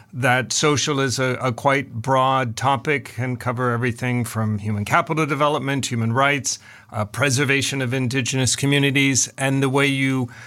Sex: male